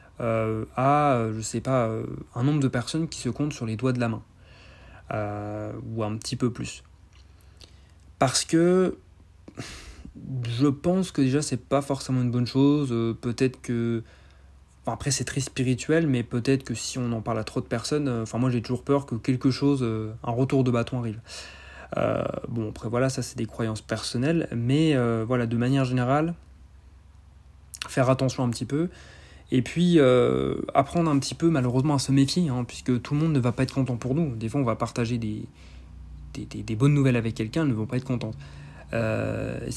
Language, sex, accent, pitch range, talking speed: French, male, French, 105-135 Hz, 200 wpm